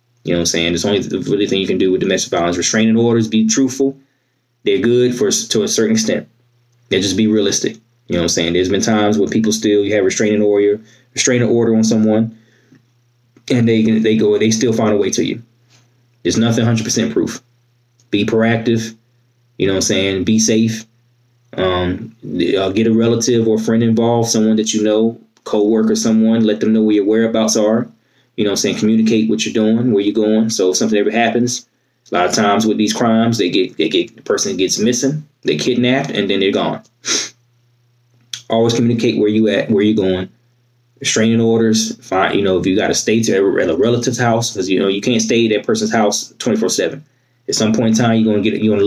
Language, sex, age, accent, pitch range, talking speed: English, male, 20-39, American, 110-120 Hz, 215 wpm